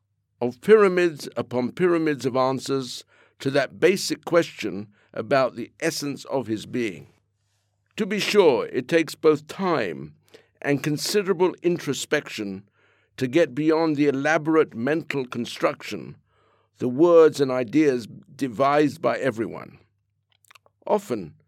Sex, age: male, 60-79